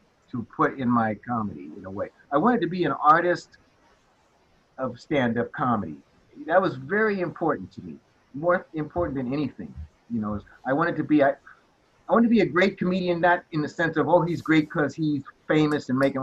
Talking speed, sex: 200 wpm, male